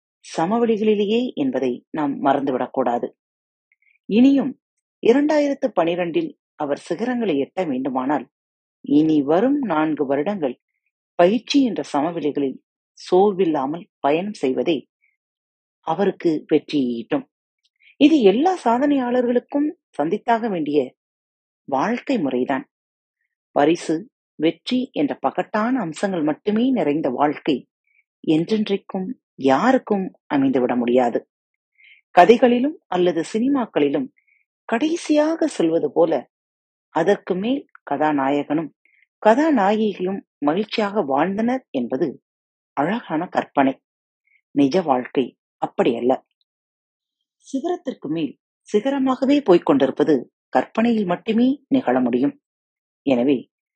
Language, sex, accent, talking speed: Tamil, female, native, 75 wpm